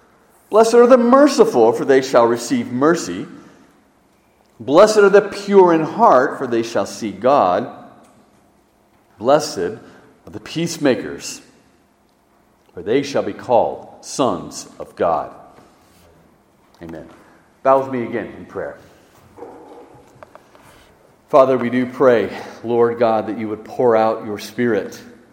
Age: 50-69